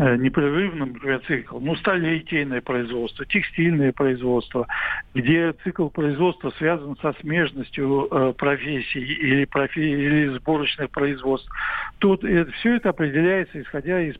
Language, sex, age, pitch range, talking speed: Russian, male, 60-79, 140-180 Hz, 115 wpm